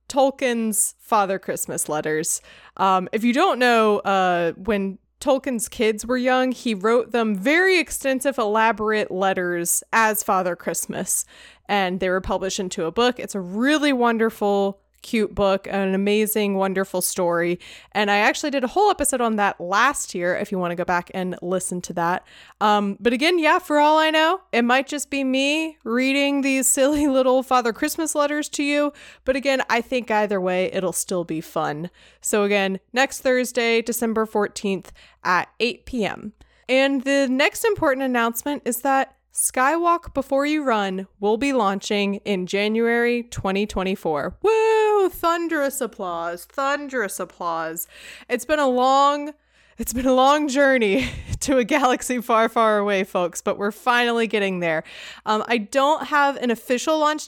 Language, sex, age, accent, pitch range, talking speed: English, female, 20-39, American, 195-275 Hz, 160 wpm